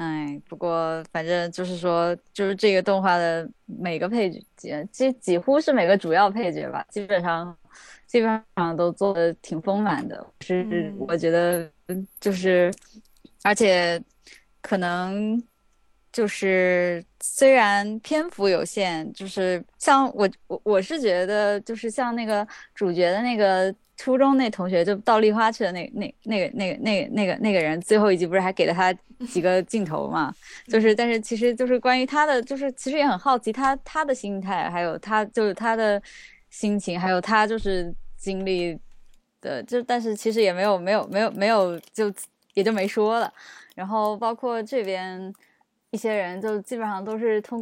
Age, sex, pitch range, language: 10-29, female, 180-235 Hz, Chinese